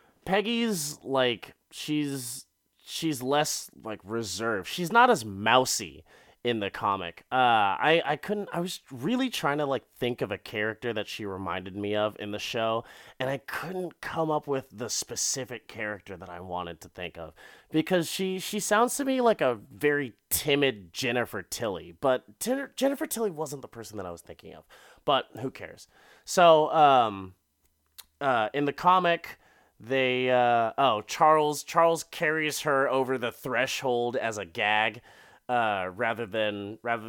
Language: English